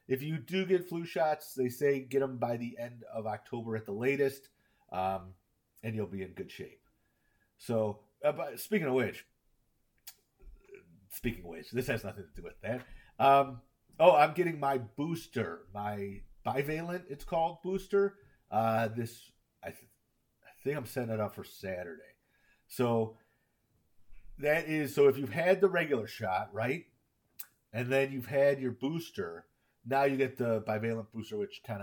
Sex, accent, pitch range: male, American, 105-140 Hz